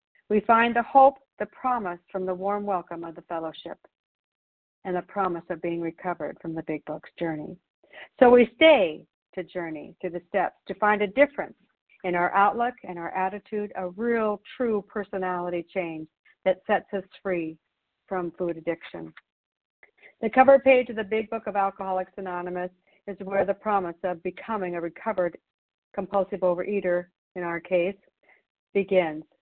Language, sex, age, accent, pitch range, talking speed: English, female, 60-79, American, 175-215 Hz, 160 wpm